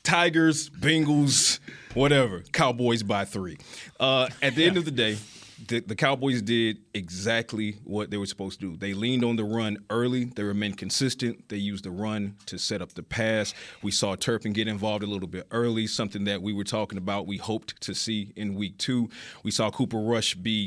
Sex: male